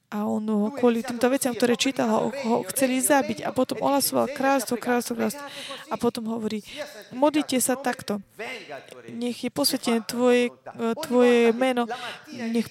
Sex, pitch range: female, 225-260 Hz